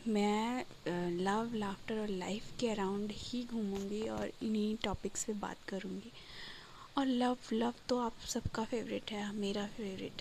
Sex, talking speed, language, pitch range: female, 145 wpm, Hindi, 195-230 Hz